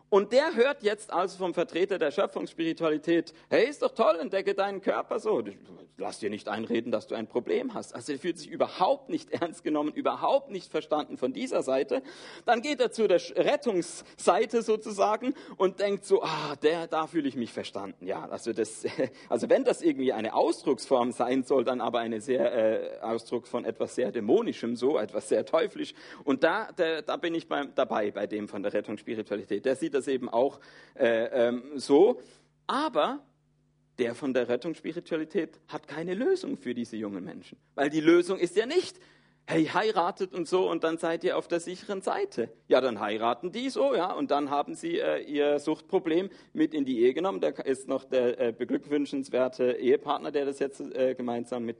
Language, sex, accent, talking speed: German, male, German, 190 wpm